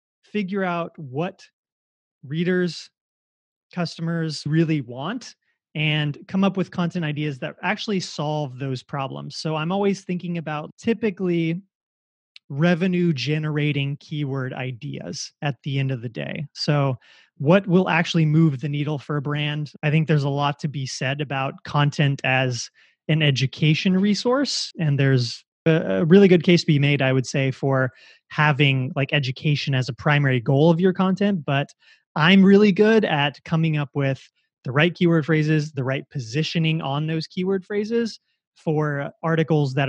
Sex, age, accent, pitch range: male, 30-49, American, 135-170 Hz